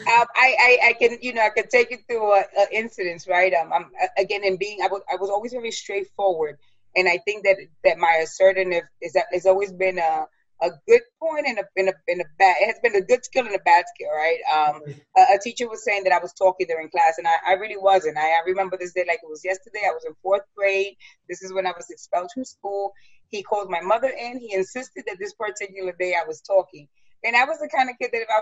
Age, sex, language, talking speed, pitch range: 30-49, female, English, 260 wpm, 175-235 Hz